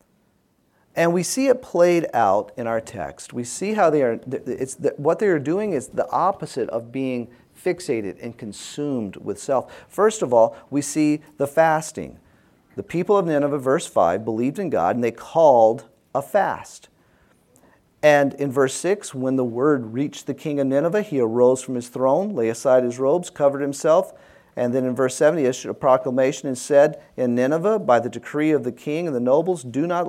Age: 40-59